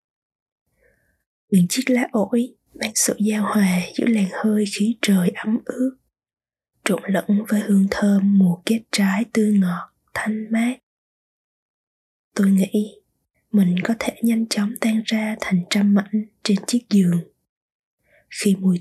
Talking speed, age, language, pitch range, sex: 140 wpm, 20-39, Vietnamese, 195-220 Hz, female